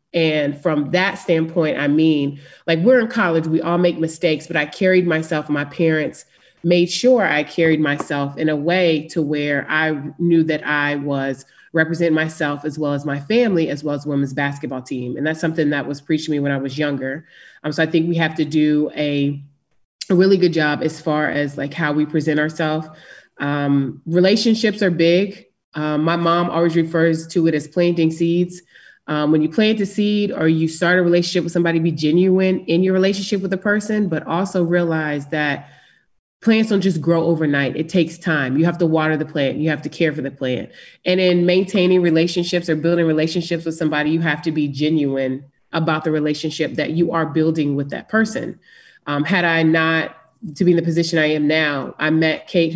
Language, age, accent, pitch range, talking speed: English, 30-49, American, 150-175 Hz, 205 wpm